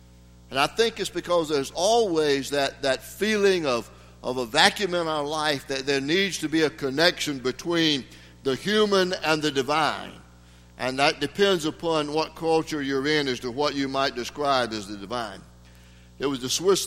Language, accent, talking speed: English, American, 180 wpm